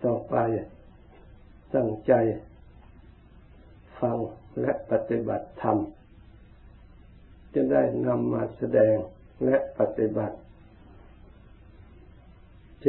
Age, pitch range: 60-79, 90-120 Hz